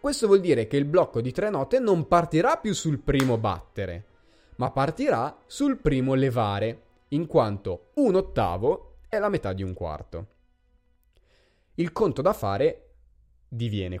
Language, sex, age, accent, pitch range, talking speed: Italian, male, 20-39, native, 95-145 Hz, 150 wpm